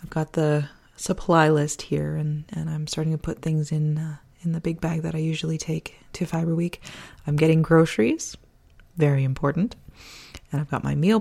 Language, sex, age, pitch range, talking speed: English, female, 20-39, 155-200 Hz, 195 wpm